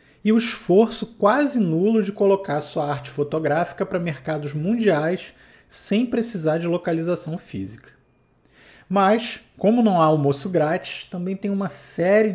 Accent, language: Brazilian, Portuguese